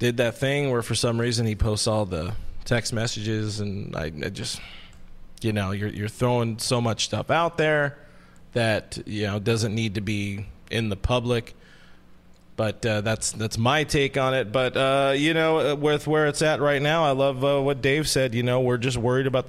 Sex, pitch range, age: male, 105-135 Hz, 30-49